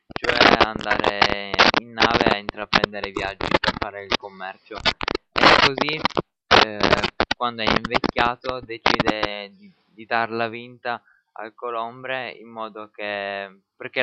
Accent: native